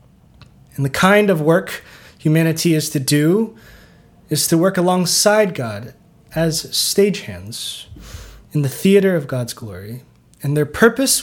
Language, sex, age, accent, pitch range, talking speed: English, male, 20-39, American, 135-185 Hz, 135 wpm